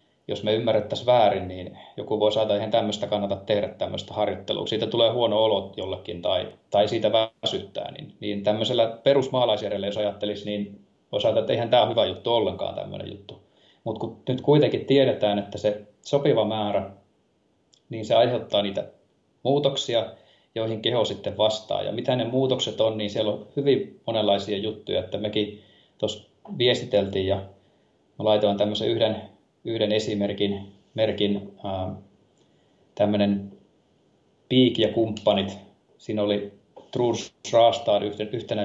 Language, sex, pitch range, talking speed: Finnish, male, 100-115 Hz, 140 wpm